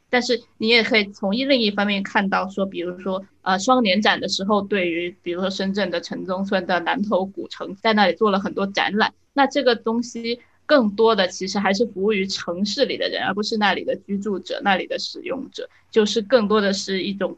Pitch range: 190-230 Hz